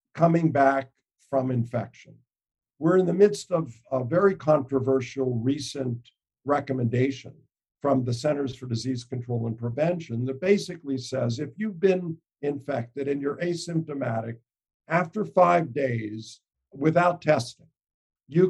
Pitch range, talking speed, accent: 125-160 Hz, 125 wpm, American